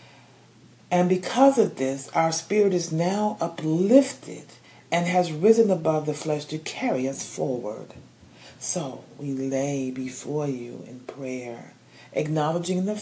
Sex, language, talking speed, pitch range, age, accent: female, English, 130 wpm, 135-180 Hz, 40-59, American